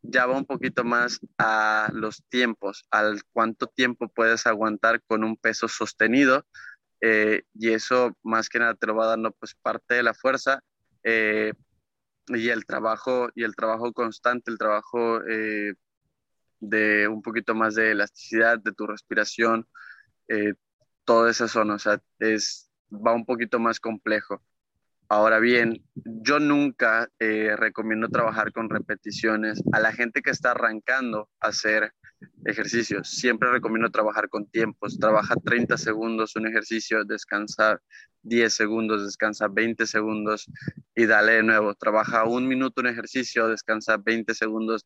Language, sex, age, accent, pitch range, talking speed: Spanish, male, 20-39, Mexican, 110-120 Hz, 145 wpm